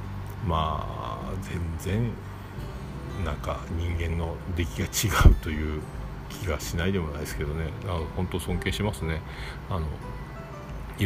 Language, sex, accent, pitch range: Japanese, male, native, 80-100 Hz